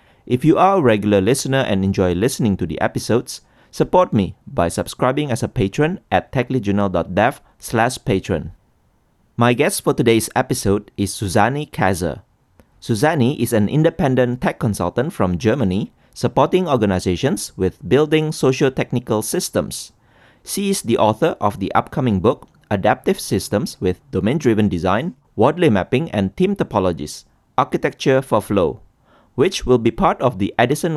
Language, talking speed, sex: English, 140 wpm, male